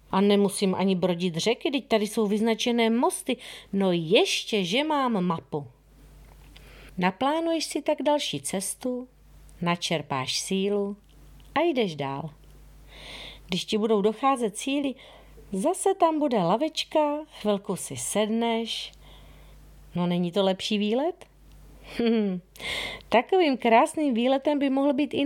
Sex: female